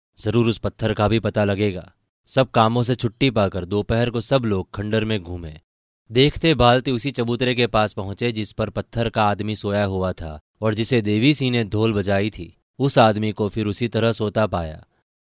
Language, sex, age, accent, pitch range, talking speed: Hindi, male, 20-39, native, 95-115 Hz, 195 wpm